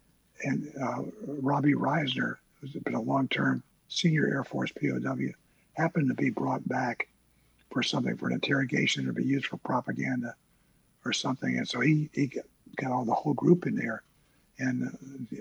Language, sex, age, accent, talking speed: English, male, 50-69, American, 165 wpm